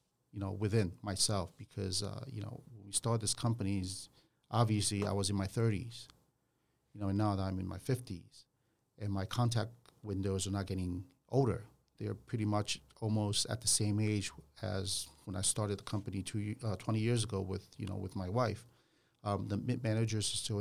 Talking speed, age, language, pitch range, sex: 190 wpm, 40-59, English, 100-120 Hz, male